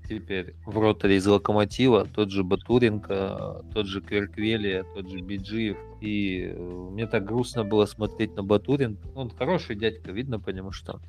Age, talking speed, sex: 20-39, 150 wpm, male